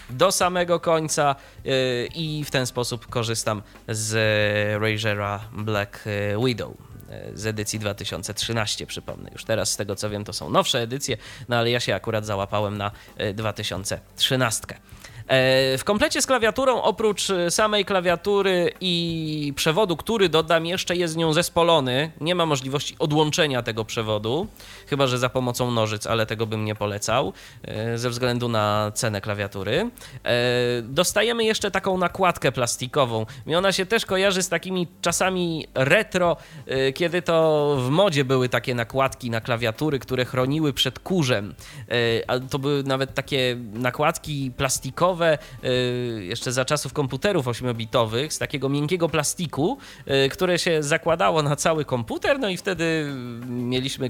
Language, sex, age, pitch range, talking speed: Polish, male, 20-39, 110-165 Hz, 140 wpm